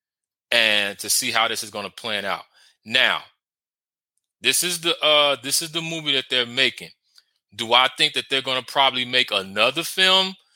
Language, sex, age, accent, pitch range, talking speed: English, male, 30-49, American, 115-140 Hz, 190 wpm